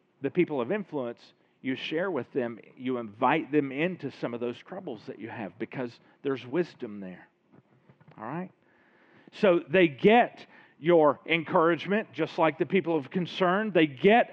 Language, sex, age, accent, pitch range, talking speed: English, male, 40-59, American, 145-190 Hz, 160 wpm